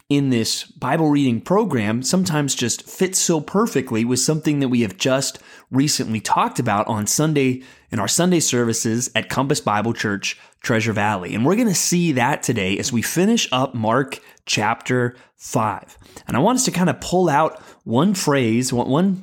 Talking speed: 180 wpm